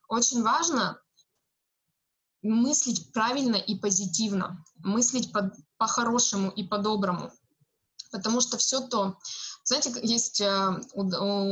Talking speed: 90 wpm